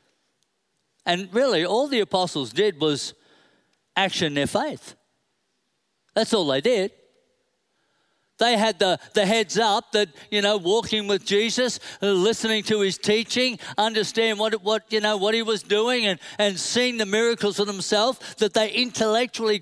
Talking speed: 150 wpm